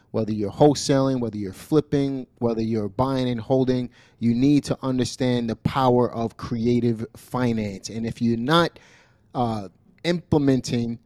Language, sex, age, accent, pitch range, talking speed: English, male, 30-49, American, 115-140 Hz, 140 wpm